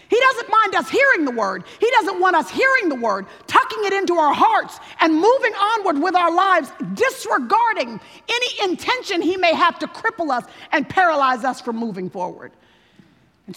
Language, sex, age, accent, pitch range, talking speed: English, female, 50-69, American, 195-285 Hz, 180 wpm